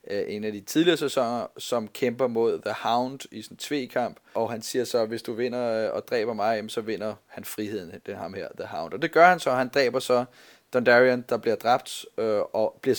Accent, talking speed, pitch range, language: native, 220 wpm, 120-145 Hz, Danish